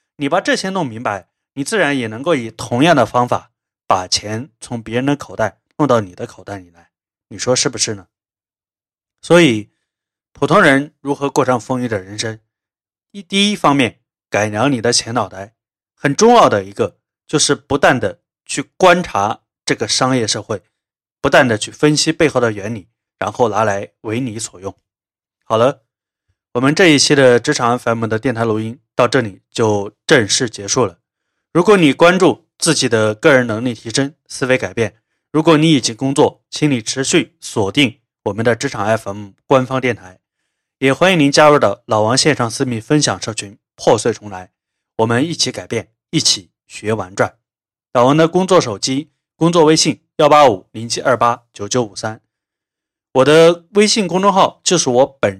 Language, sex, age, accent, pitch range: Chinese, male, 20-39, native, 110-145 Hz